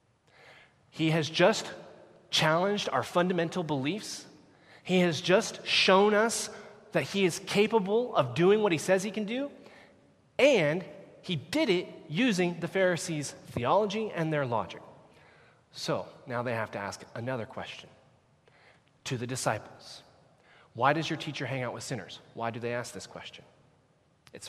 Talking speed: 150 wpm